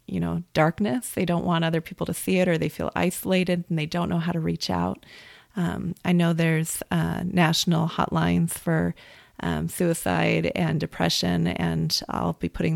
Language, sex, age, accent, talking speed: English, female, 30-49, American, 185 wpm